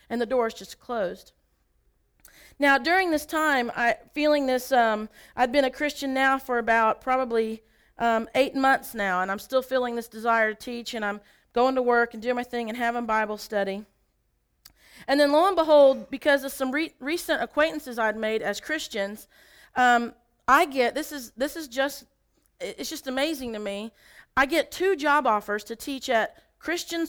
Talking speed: 190 wpm